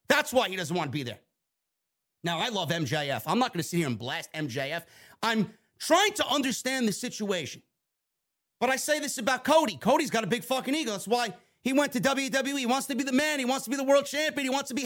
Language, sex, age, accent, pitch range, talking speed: English, male, 40-59, American, 215-275 Hz, 250 wpm